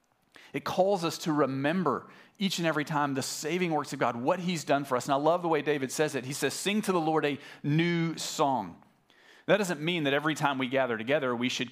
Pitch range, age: 125-165 Hz, 40-59